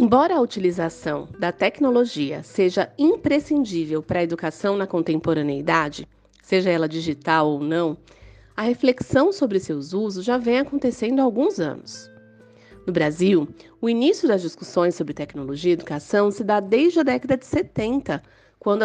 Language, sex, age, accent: Portuguese, female, 30-49, Brazilian